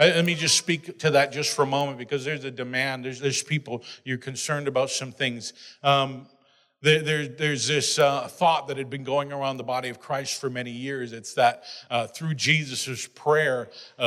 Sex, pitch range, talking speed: male, 140-180 Hz, 205 wpm